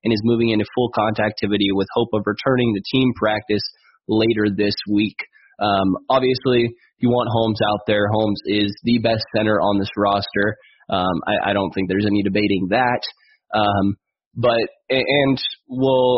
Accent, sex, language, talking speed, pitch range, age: American, male, English, 165 wpm, 105-120 Hz, 20-39